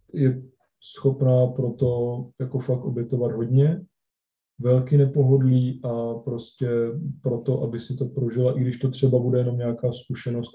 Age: 20-39